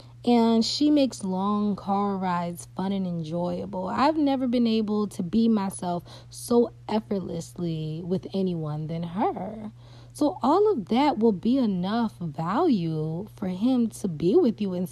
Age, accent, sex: 30-49, American, female